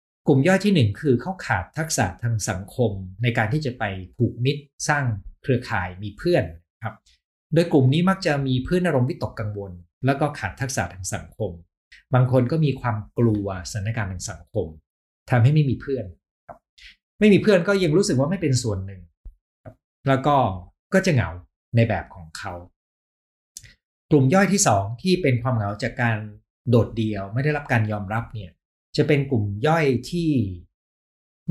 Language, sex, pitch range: Thai, male, 95-135 Hz